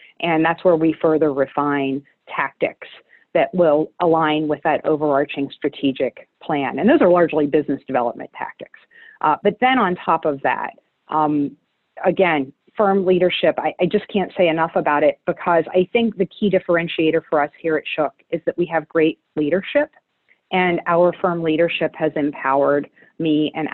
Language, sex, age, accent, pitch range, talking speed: English, female, 40-59, American, 155-195 Hz, 165 wpm